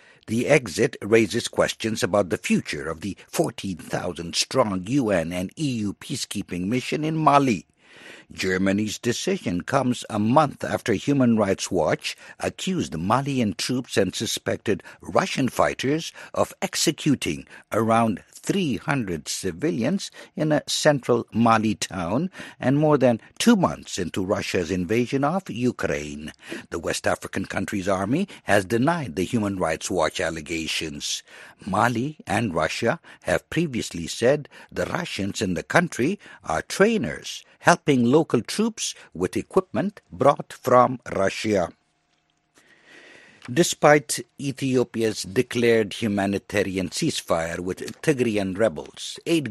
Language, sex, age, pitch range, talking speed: English, male, 60-79, 105-145 Hz, 115 wpm